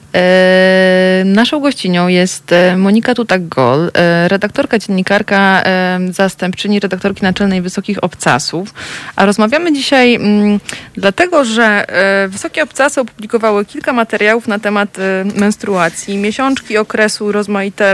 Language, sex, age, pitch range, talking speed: Polish, female, 30-49, 185-225 Hz, 95 wpm